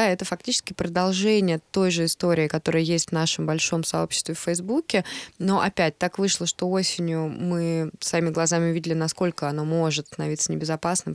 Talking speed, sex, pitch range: 155 wpm, female, 165-190 Hz